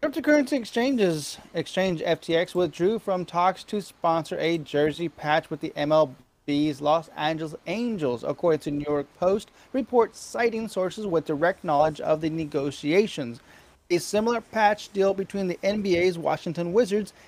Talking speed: 140 wpm